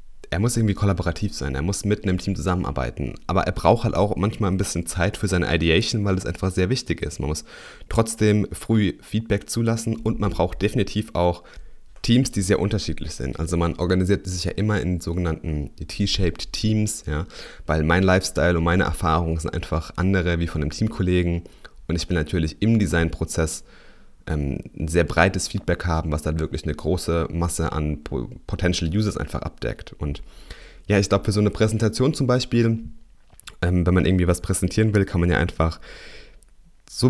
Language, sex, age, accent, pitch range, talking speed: German, male, 30-49, German, 80-100 Hz, 180 wpm